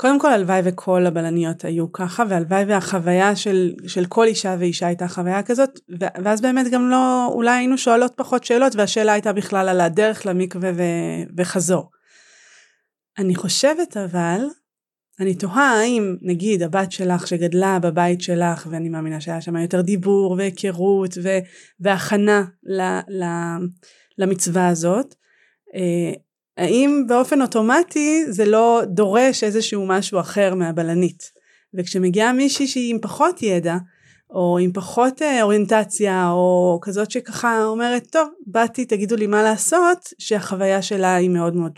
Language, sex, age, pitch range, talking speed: Hebrew, female, 30-49, 180-225 Hz, 135 wpm